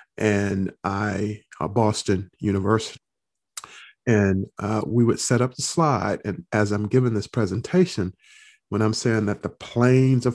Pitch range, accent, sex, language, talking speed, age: 100-130 Hz, American, male, English, 150 wpm, 50-69